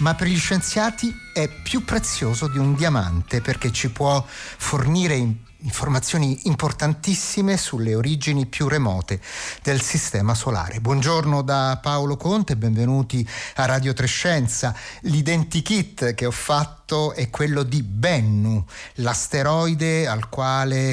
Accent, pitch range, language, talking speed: native, 115-160 Hz, Italian, 125 wpm